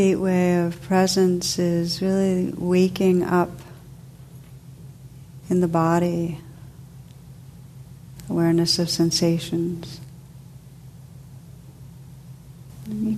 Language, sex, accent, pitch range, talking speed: English, female, American, 135-170 Hz, 65 wpm